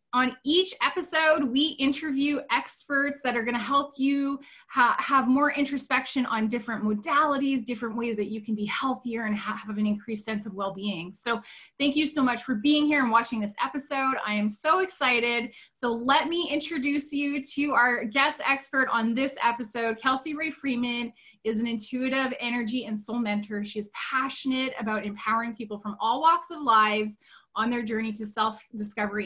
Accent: American